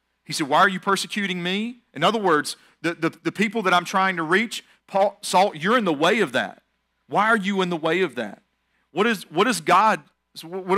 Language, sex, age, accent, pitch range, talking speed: English, male, 40-59, American, 160-200 Hz, 210 wpm